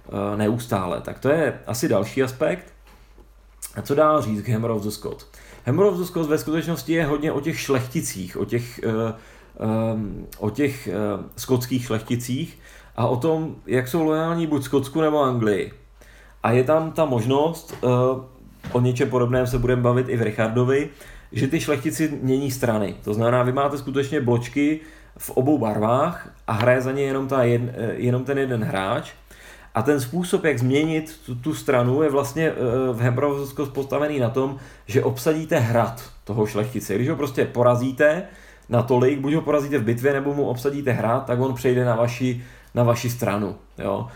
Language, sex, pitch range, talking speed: Czech, male, 120-145 Hz, 165 wpm